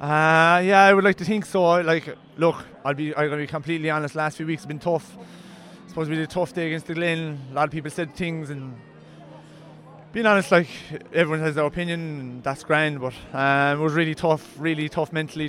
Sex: male